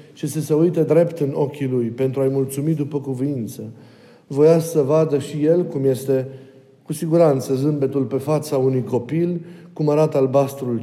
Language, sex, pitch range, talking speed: Romanian, male, 135-170 Hz, 170 wpm